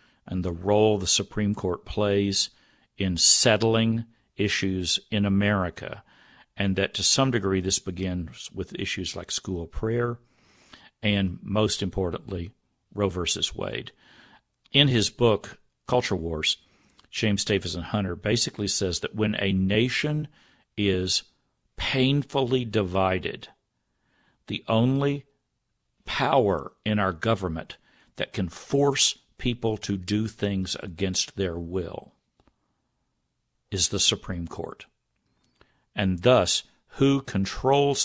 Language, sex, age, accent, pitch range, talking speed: English, male, 50-69, American, 95-115 Hz, 115 wpm